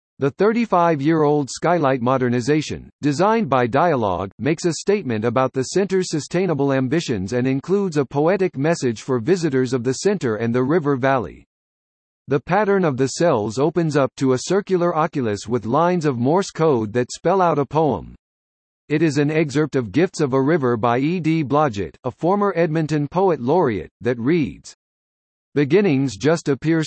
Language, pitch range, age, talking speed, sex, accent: English, 125-170 Hz, 50-69, 165 wpm, male, American